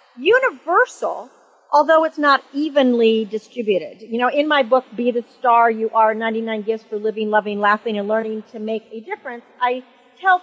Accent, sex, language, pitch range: American, female, English, 225-285 Hz